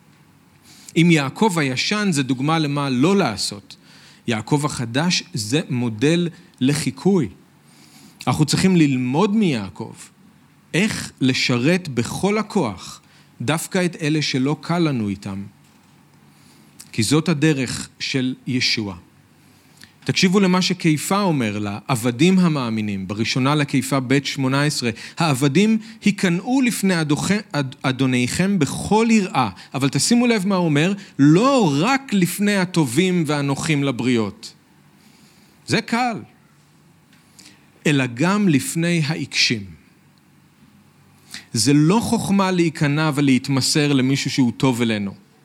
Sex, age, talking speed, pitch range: male, 40-59, 105 wpm, 130-175 Hz